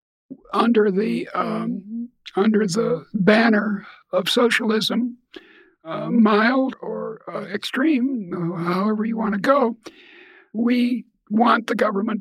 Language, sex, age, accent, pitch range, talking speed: English, male, 60-79, American, 210-265 Hz, 110 wpm